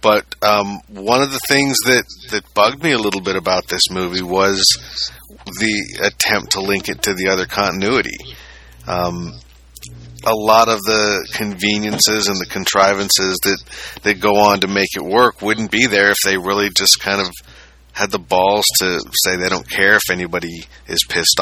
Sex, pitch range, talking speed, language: male, 85-105 Hz, 180 wpm, English